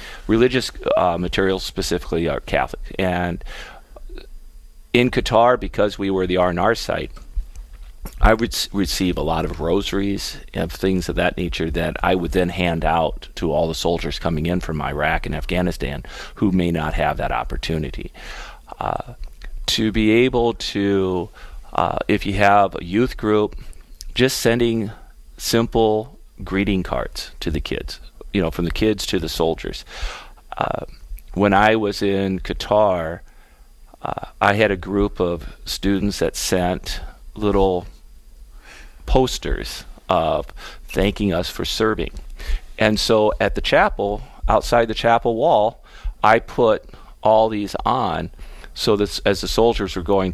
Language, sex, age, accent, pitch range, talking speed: English, male, 40-59, American, 85-105 Hz, 145 wpm